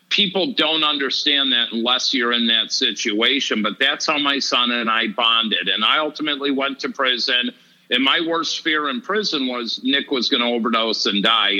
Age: 50-69